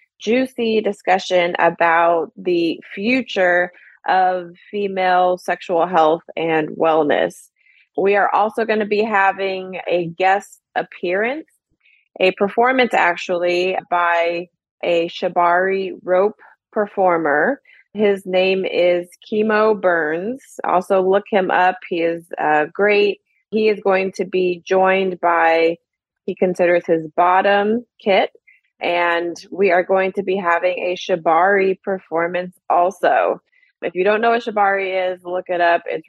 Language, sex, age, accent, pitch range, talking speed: English, female, 20-39, American, 175-205 Hz, 125 wpm